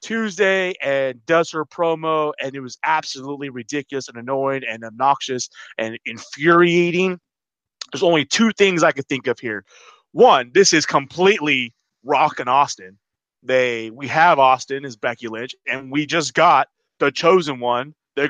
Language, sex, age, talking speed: English, male, 30-49, 155 wpm